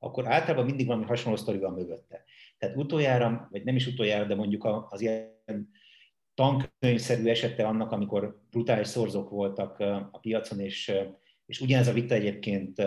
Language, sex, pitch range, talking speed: Hungarian, male, 100-120 Hz, 150 wpm